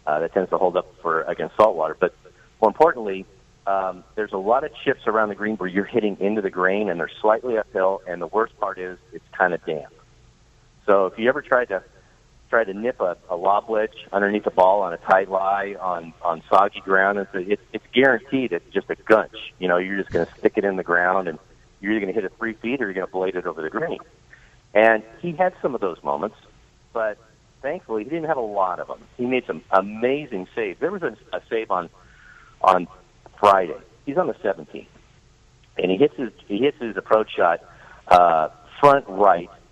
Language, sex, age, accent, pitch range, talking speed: English, male, 40-59, American, 95-125 Hz, 220 wpm